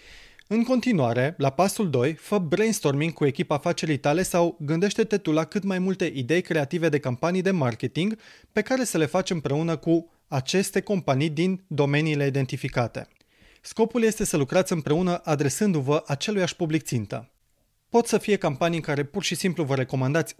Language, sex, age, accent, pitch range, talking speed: Romanian, male, 30-49, native, 140-190 Hz, 165 wpm